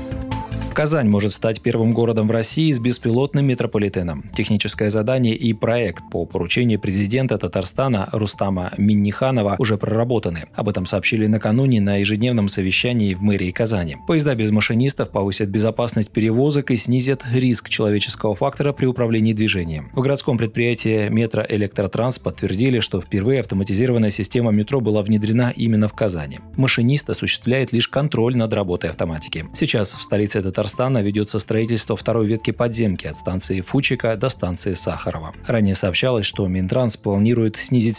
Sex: male